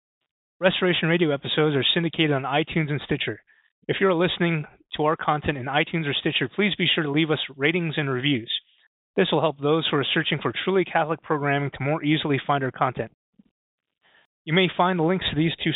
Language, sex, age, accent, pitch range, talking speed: English, male, 30-49, American, 140-165 Hz, 205 wpm